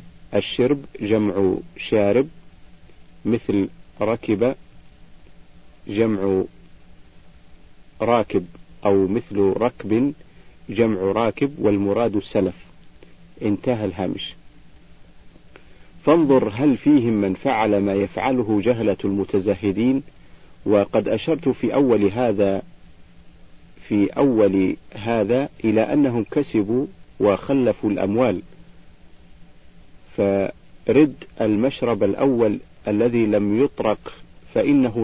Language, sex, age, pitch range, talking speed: Arabic, male, 50-69, 95-115 Hz, 75 wpm